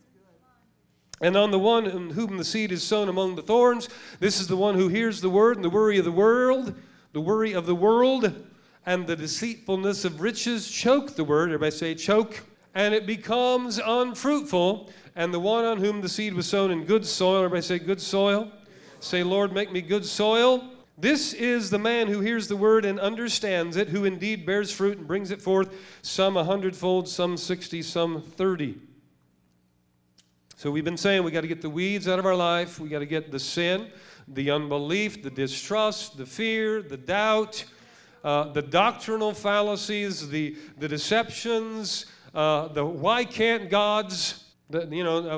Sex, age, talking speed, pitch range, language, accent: male, 40-59, 180 wpm, 155-210 Hz, English, American